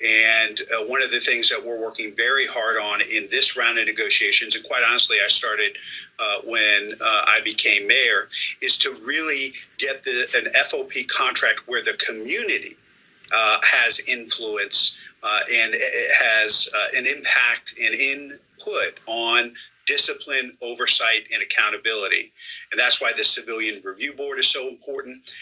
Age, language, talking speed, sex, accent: 40-59, English, 150 wpm, male, American